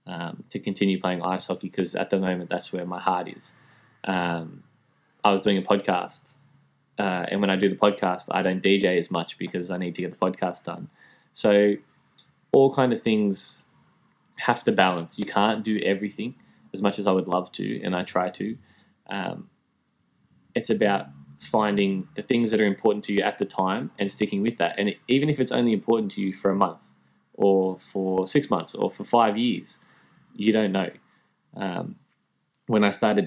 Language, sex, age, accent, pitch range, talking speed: English, male, 20-39, Australian, 95-105 Hz, 195 wpm